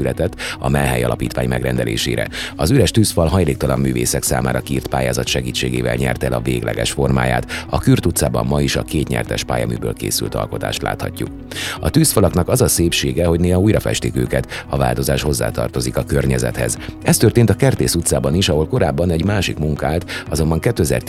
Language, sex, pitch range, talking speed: Hungarian, male, 65-85 Hz, 160 wpm